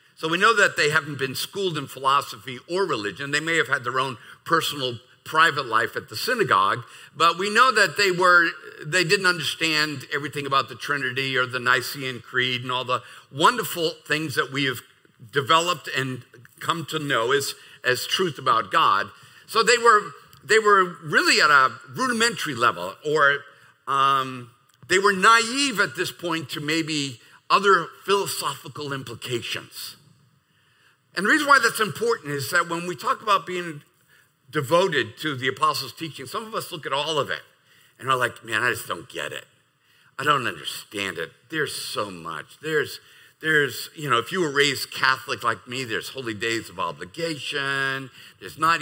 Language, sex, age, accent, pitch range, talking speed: English, male, 50-69, American, 130-180 Hz, 175 wpm